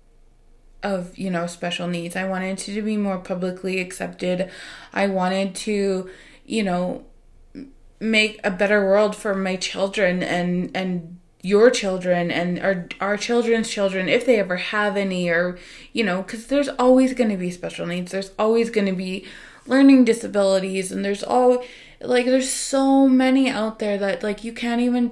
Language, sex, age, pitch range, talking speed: English, female, 20-39, 180-230 Hz, 165 wpm